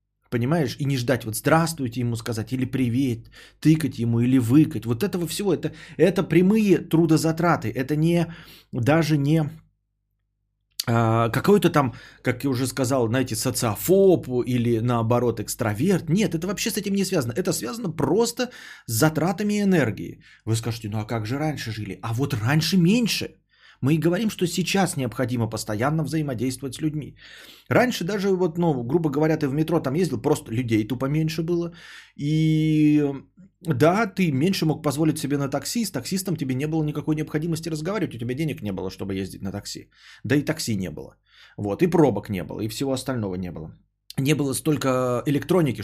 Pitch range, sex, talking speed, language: 120-165 Hz, male, 175 wpm, Bulgarian